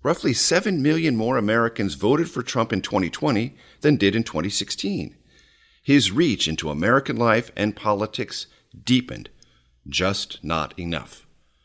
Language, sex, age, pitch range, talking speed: English, male, 50-69, 90-125 Hz, 130 wpm